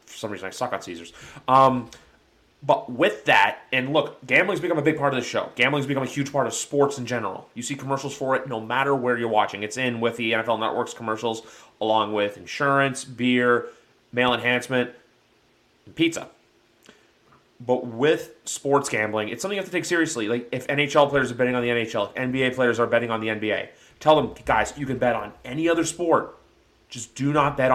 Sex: male